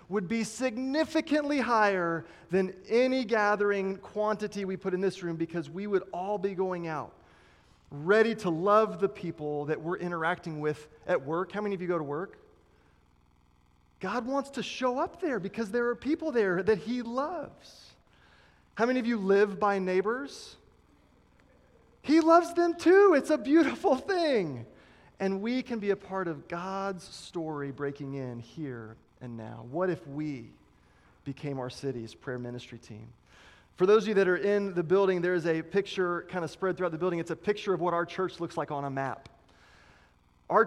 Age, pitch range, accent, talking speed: 30-49, 155-210 Hz, American, 180 wpm